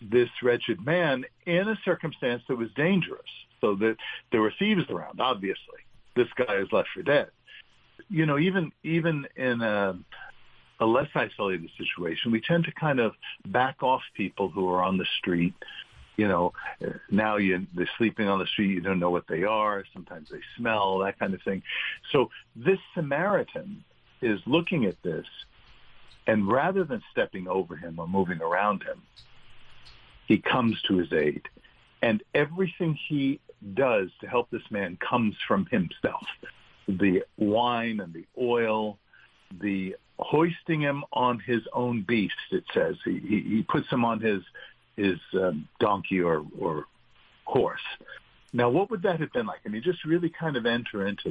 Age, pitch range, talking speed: 60-79, 105-170 Hz, 165 wpm